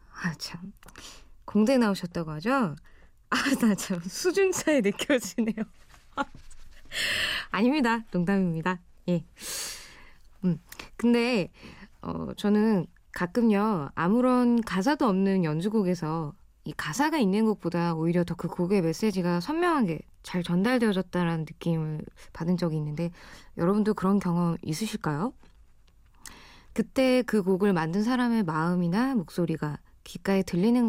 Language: Korean